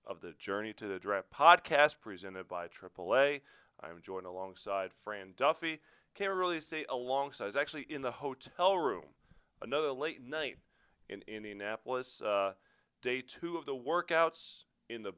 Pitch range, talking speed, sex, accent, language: 110-150 Hz, 150 wpm, male, American, English